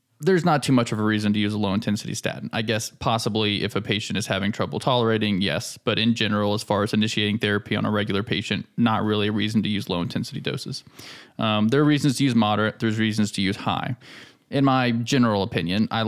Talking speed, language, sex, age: 225 wpm, English, male, 20-39